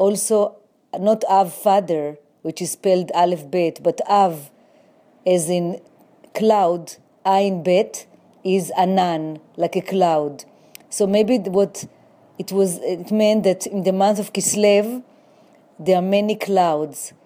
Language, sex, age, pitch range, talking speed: English, female, 30-49, 180-215 Hz, 130 wpm